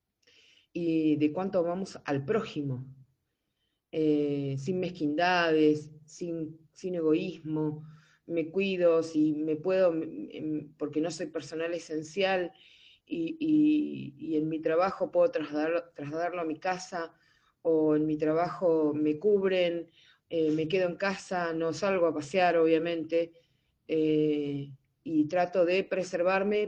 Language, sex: Spanish, female